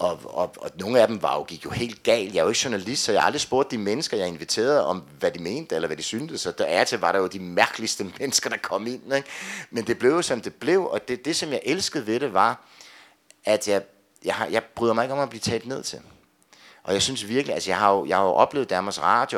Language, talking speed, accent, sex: Danish, 280 wpm, native, male